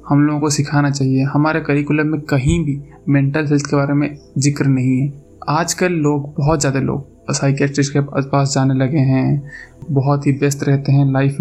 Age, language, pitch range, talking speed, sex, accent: 20-39, Hindi, 140-155 Hz, 185 wpm, male, native